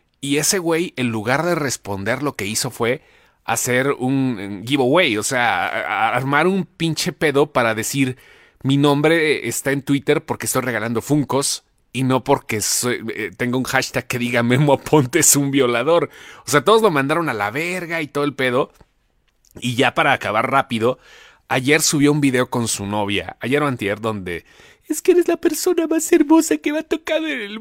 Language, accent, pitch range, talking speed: English, Mexican, 120-180 Hz, 190 wpm